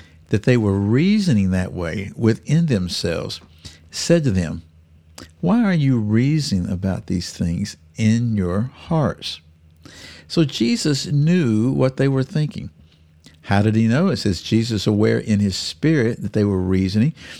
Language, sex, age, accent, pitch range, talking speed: English, male, 60-79, American, 90-130 Hz, 150 wpm